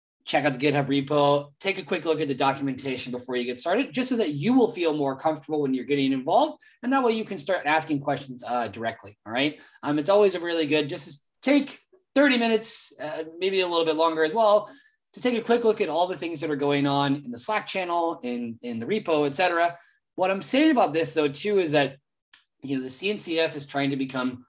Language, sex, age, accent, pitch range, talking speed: English, male, 30-49, American, 135-180 Hz, 240 wpm